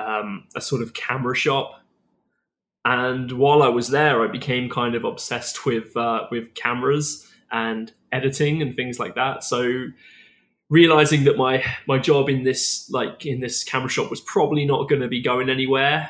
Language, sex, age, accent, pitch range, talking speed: English, male, 20-39, British, 120-140 Hz, 175 wpm